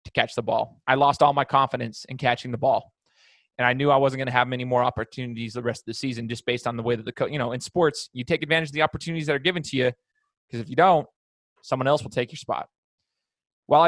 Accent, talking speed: American, 275 wpm